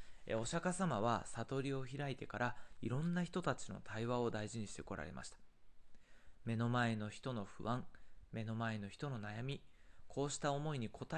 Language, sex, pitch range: Japanese, male, 105-140 Hz